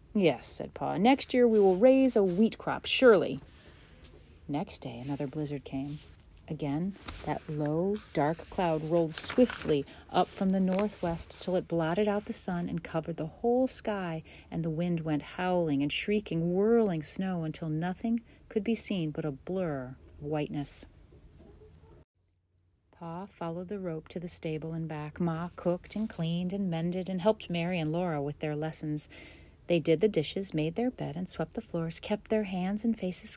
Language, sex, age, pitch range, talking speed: English, female, 40-59, 150-195 Hz, 175 wpm